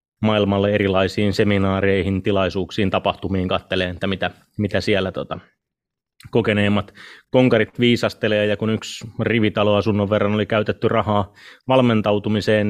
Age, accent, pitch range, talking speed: 30-49, native, 100-110 Hz, 110 wpm